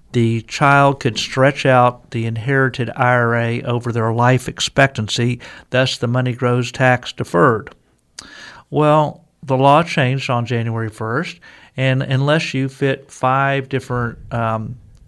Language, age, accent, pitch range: English, 50-69, American, 115-135 Hz